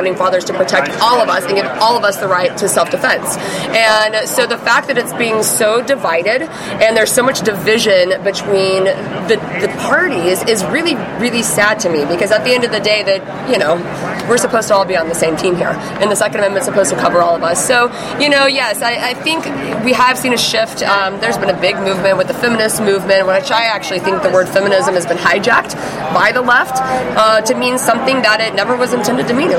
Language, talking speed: English, 235 wpm